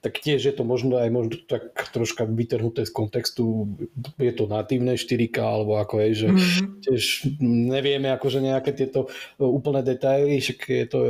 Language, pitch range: Slovak, 110-130 Hz